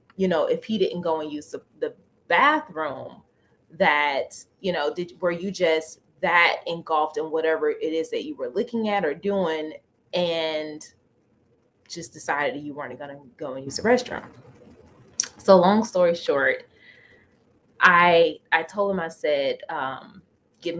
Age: 20-39